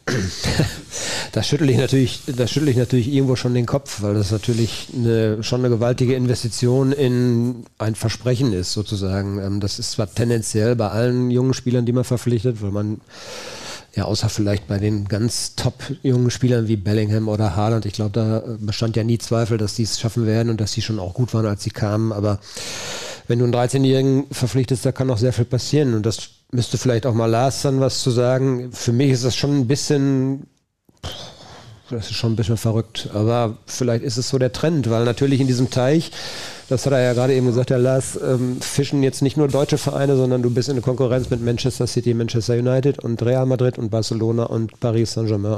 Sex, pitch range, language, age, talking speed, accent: male, 110-130 Hz, German, 40-59, 200 wpm, German